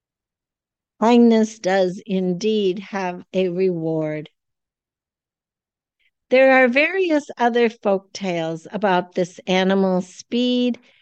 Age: 60-79